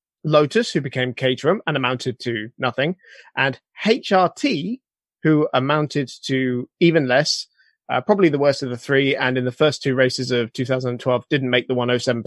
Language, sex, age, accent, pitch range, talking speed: English, male, 20-39, British, 125-165 Hz, 165 wpm